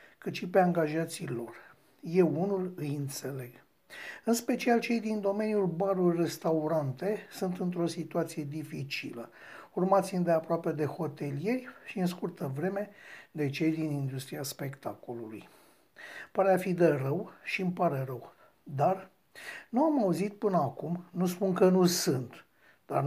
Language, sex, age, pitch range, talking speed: Romanian, male, 60-79, 155-205 Hz, 140 wpm